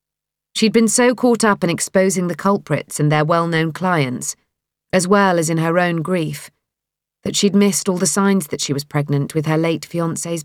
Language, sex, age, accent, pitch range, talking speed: English, female, 40-59, British, 155-190 Hz, 195 wpm